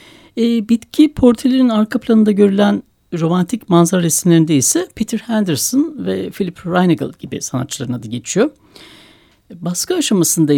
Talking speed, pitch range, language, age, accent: 125 wpm, 145-205 Hz, Turkish, 60-79, native